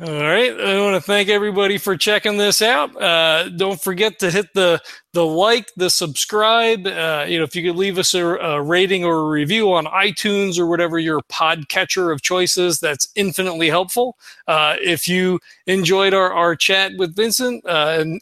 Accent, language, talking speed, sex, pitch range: American, English, 190 wpm, male, 165-195 Hz